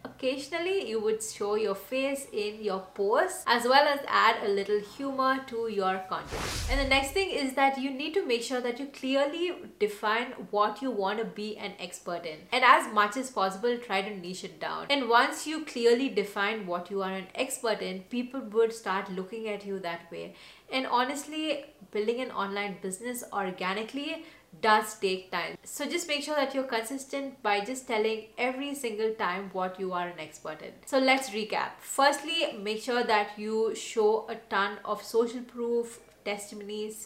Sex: female